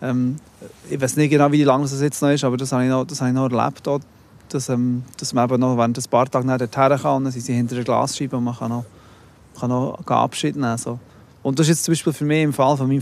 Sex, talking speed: male, 275 wpm